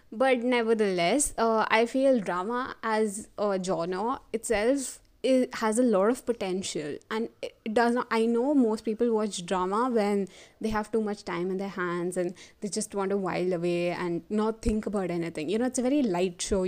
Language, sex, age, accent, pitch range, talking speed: English, female, 20-39, Indian, 185-230 Hz, 195 wpm